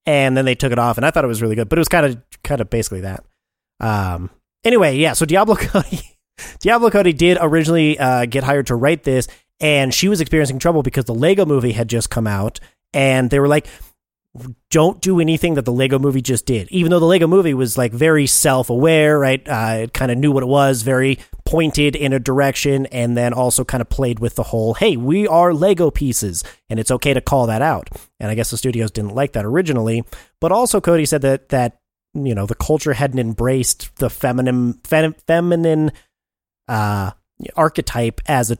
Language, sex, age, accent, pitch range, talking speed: English, male, 30-49, American, 120-150 Hz, 210 wpm